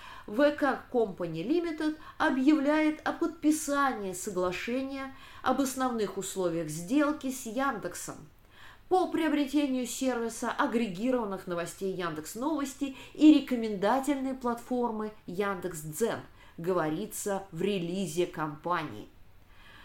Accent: native